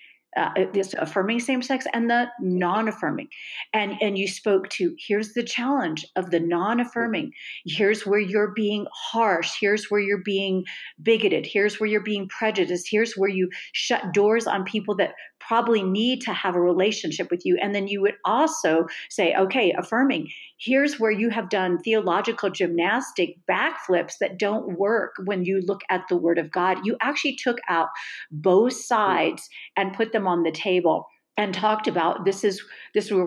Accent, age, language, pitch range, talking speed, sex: American, 40-59, English, 175-215 Hz, 175 wpm, female